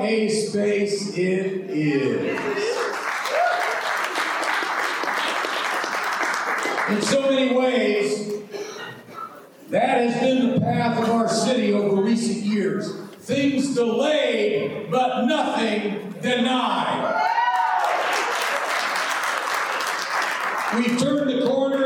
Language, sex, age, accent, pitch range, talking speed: English, male, 40-59, American, 215-265 Hz, 75 wpm